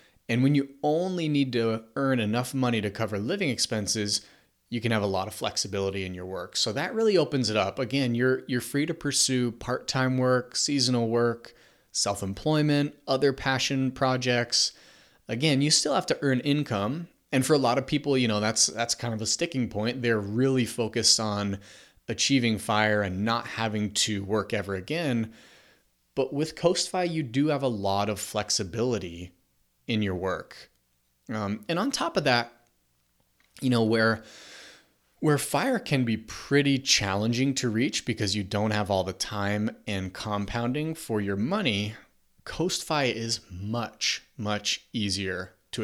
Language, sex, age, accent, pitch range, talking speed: English, male, 30-49, American, 105-135 Hz, 165 wpm